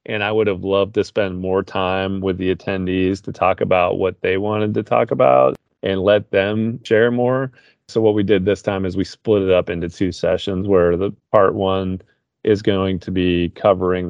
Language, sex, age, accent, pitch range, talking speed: English, male, 30-49, American, 85-105 Hz, 210 wpm